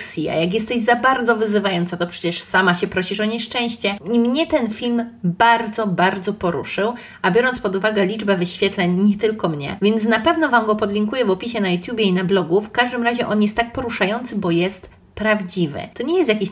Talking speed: 205 wpm